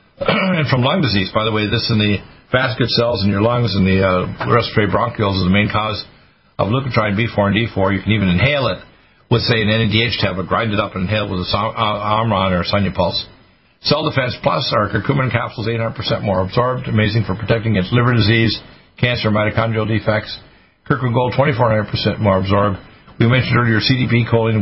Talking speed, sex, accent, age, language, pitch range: 195 wpm, male, American, 60-79, English, 100-120 Hz